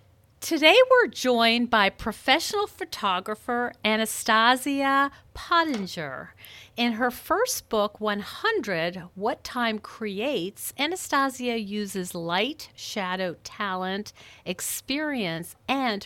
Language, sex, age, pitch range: English, female, 50-69, 175-245 Hz